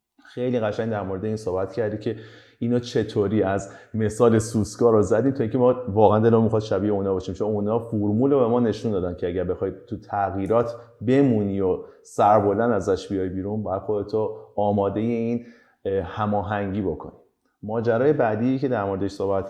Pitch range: 95-115 Hz